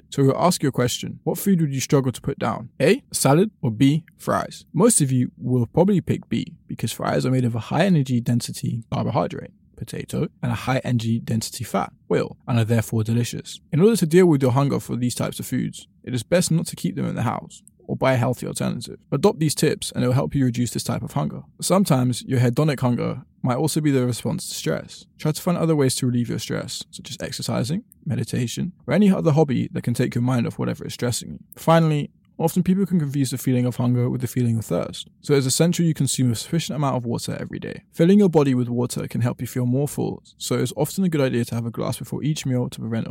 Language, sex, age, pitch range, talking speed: English, male, 20-39, 125-165 Hz, 250 wpm